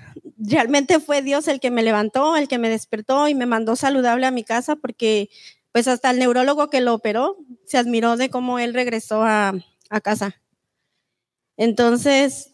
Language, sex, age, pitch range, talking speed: English, female, 30-49, 235-275 Hz, 170 wpm